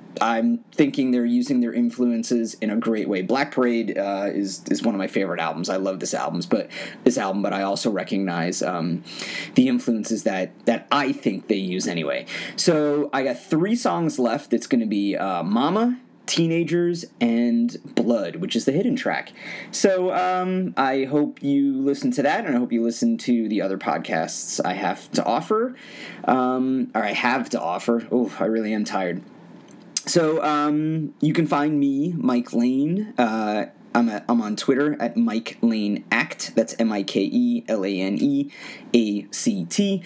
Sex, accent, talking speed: male, American, 165 wpm